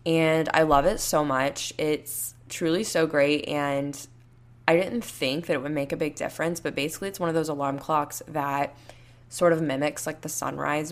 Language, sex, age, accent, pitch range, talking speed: English, female, 10-29, American, 140-160 Hz, 200 wpm